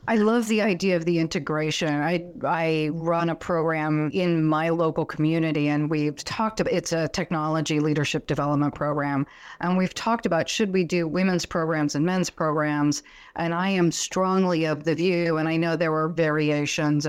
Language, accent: English, American